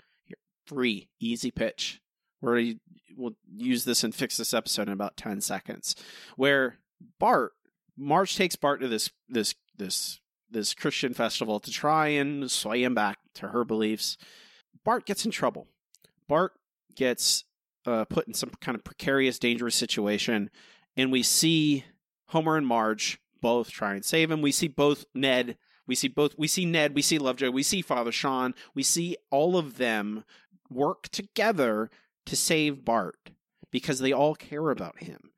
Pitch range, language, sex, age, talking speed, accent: 120-170 Hz, English, male, 30-49, 160 wpm, American